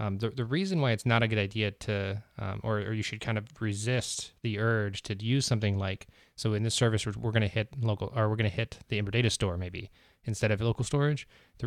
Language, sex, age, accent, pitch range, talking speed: English, male, 20-39, American, 100-120 Hz, 250 wpm